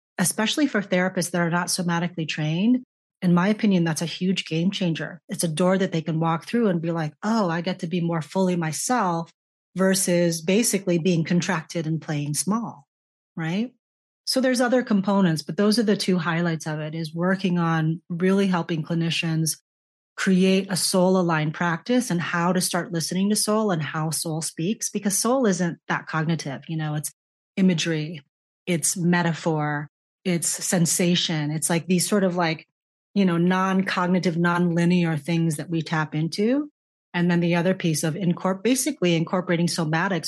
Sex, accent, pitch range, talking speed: female, American, 160-185 Hz, 170 wpm